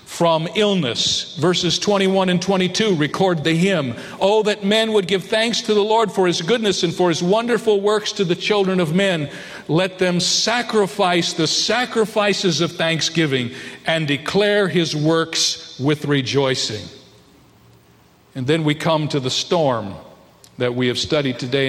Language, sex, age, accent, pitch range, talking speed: English, male, 50-69, American, 135-180 Hz, 155 wpm